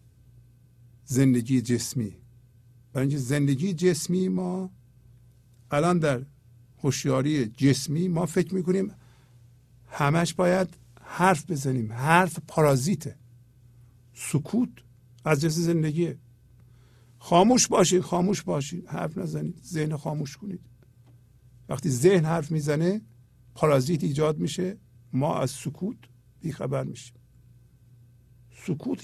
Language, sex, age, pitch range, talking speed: English, male, 50-69, 120-160 Hz, 95 wpm